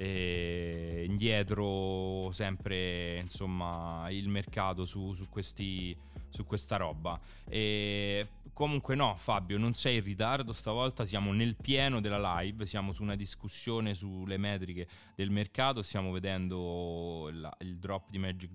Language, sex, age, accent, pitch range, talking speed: Italian, male, 30-49, native, 90-110 Hz, 125 wpm